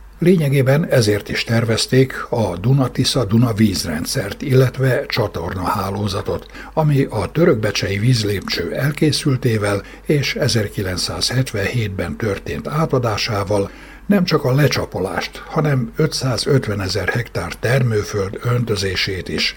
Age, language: 60-79, Hungarian